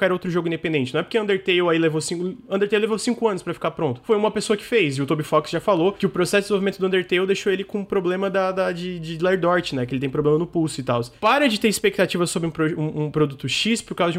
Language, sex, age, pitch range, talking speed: Portuguese, male, 20-39, 165-215 Hz, 285 wpm